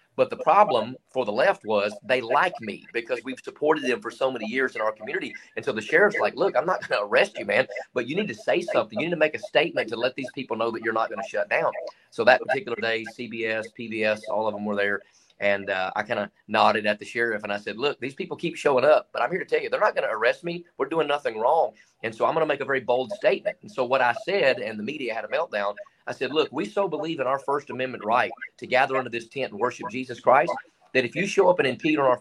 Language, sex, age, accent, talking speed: English, male, 30-49, American, 285 wpm